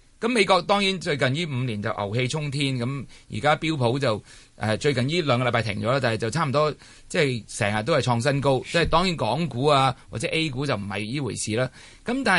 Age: 20-39